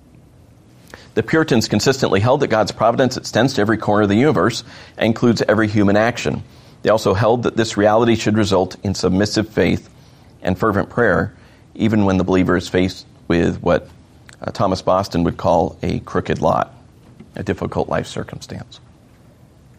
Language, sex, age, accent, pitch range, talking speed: English, male, 40-59, American, 95-115 Hz, 160 wpm